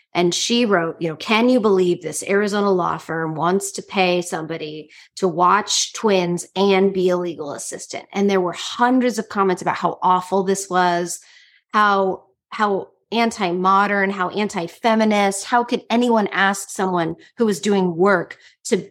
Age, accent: 30-49, American